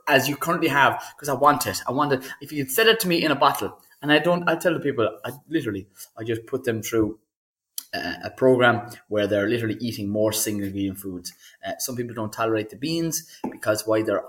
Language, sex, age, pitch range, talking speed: English, male, 20-39, 100-125 Hz, 230 wpm